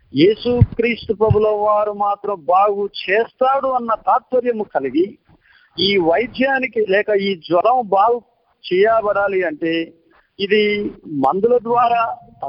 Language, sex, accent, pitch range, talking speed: Telugu, male, native, 185-245 Hz, 100 wpm